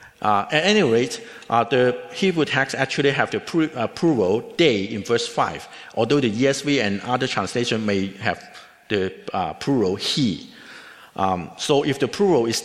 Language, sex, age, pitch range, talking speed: English, male, 50-69, 105-135 Hz, 170 wpm